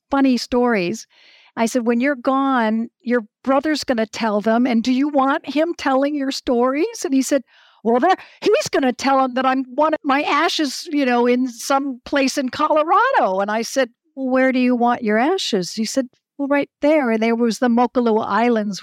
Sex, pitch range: female, 195-255 Hz